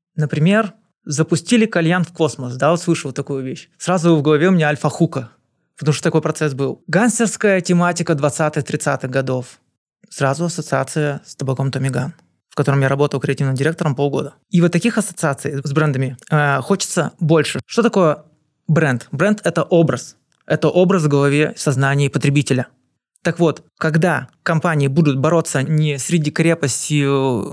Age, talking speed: 20-39, 150 wpm